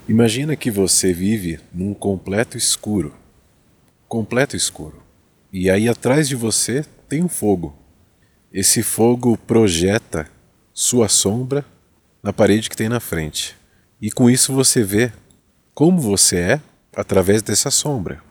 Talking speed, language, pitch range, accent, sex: 130 wpm, Portuguese, 95-120 Hz, Brazilian, male